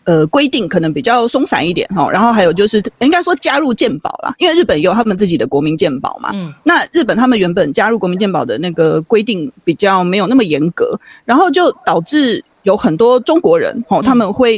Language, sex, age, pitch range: Chinese, female, 30-49, 195-280 Hz